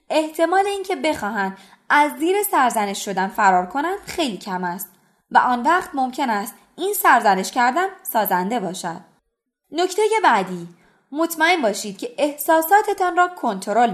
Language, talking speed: Persian, 130 wpm